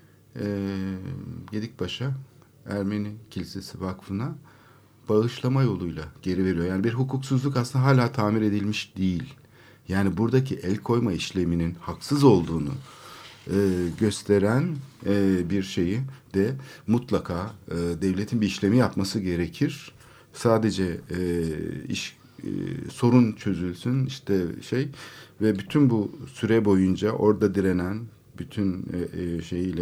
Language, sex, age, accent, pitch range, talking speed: Turkish, male, 60-79, native, 90-115 Hz, 110 wpm